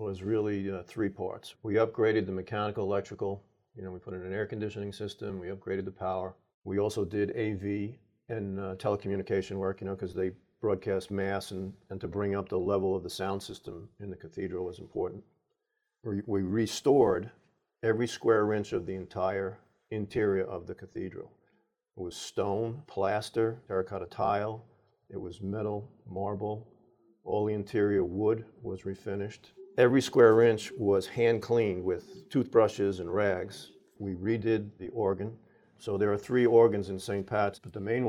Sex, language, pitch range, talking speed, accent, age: male, English, 95-115 Hz, 165 wpm, American, 50-69